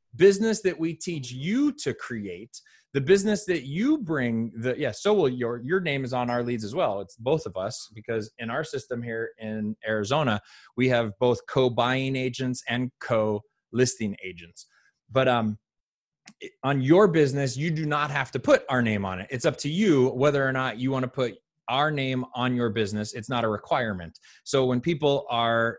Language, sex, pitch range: English, male, 120-155 Hz